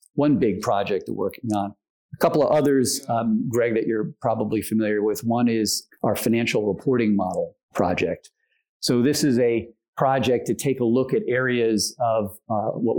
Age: 40-59